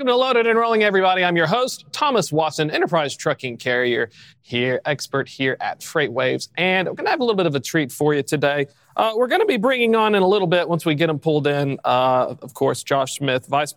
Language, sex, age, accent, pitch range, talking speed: English, male, 30-49, American, 125-185 Hz, 250 wpm